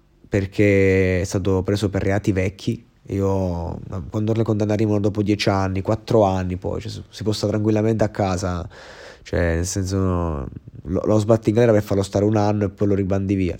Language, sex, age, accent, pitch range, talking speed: Italian, male, 20-39, native, 90-105 Hz, 185 wpm